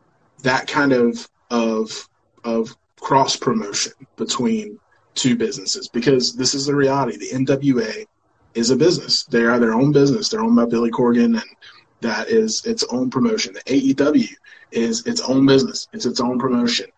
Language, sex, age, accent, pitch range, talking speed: English, male, 20-39, American, 120-155 Hz, 165 wpm